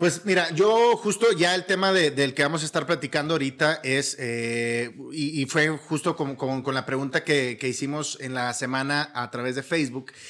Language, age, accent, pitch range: Spanish, 30-49, Mexican, 145-180 Hz